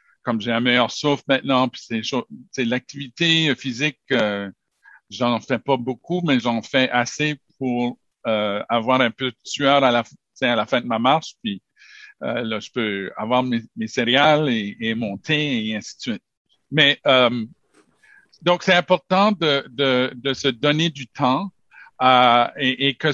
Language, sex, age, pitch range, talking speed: French, male, 50-69, 120-170 Hz, 175 wpm